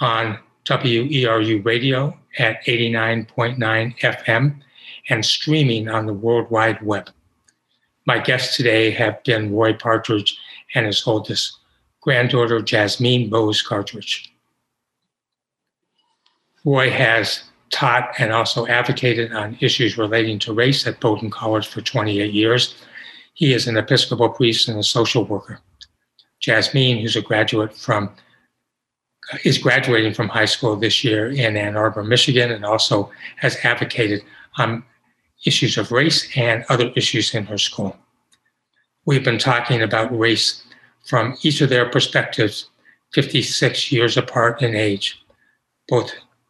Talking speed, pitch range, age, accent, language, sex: 130 wpm, 110-125 Hz, 60-79, American, English, male